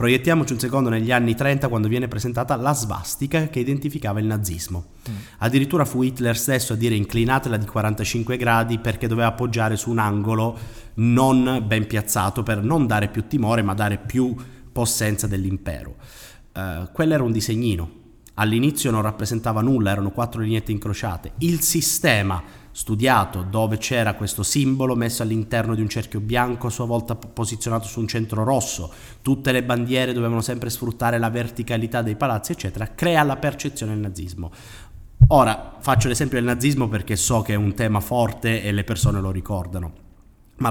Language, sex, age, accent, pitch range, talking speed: Italian, male, 30-49, native, 105-125 Hz, 165 wpm